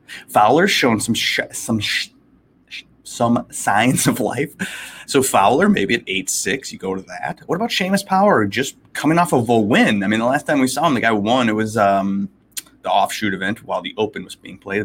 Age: 30-49